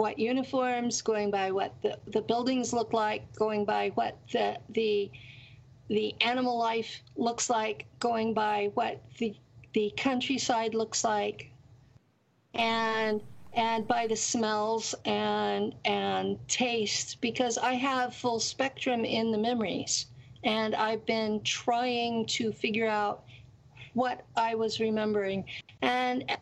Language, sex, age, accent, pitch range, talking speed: English, female, 50-69, American, 195-230 Hz, 125 wpm